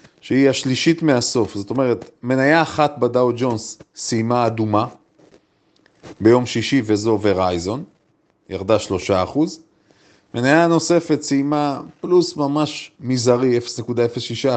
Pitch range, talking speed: 120-165 Hz, 105 wpm